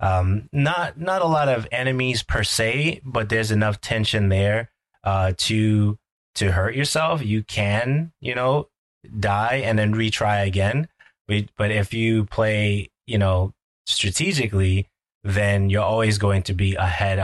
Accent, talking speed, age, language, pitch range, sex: American, 150 wpm, 30-49, English, 95-115 Hz, male